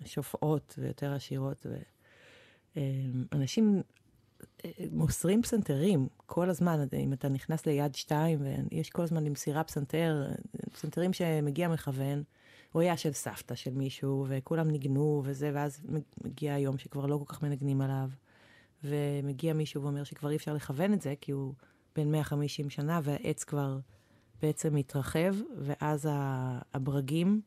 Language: Hebrew